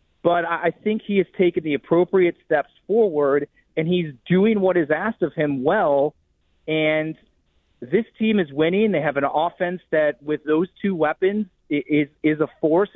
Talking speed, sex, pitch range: 170 wpm, male, 140-170 Hz